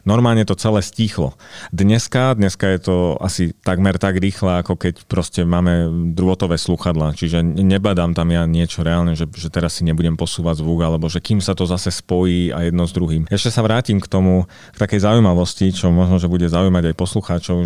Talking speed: 195 wpm